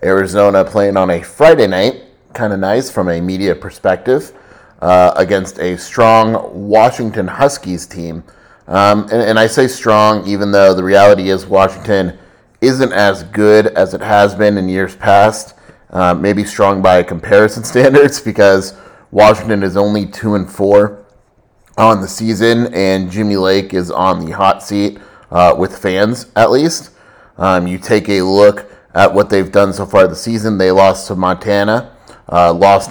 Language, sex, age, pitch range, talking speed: English, male, 30-49, 95-105 Hz, 160 wpm